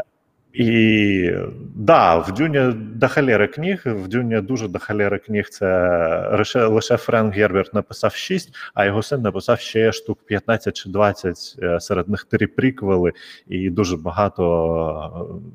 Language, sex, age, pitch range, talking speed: Ukrainian, male, 30-49, 95-120 Hz, 125 wpm